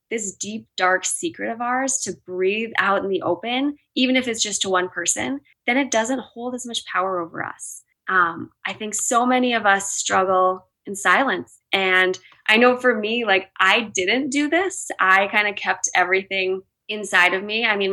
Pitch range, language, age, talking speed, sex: 180-220 Hz, English, 20-39, 195 wpm, female